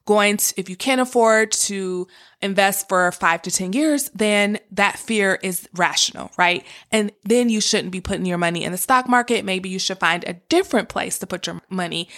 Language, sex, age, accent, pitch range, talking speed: English, female, 20-39, American, 185-240 Hz, 205 wpm